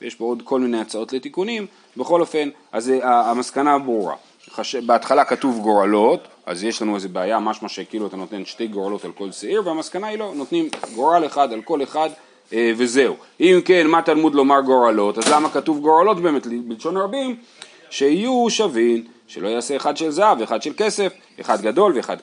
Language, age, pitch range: Hebrew, 30-49, 110-155 Hz